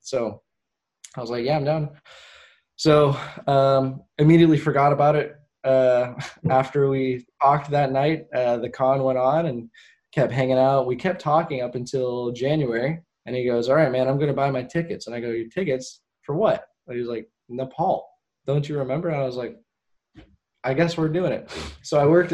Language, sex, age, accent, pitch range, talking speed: English, male, 10-29, American, 120-140 Hz, 195 wpm